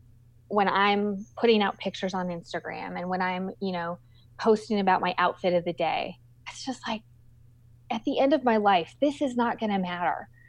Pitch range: 150-225 Hz